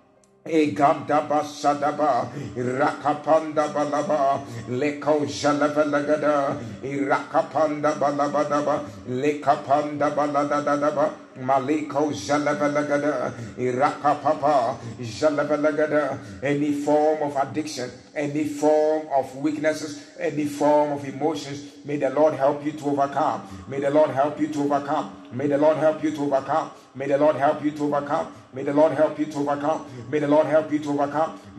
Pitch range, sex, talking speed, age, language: 140-150 Hz, male, 135 wpm, 60-79, English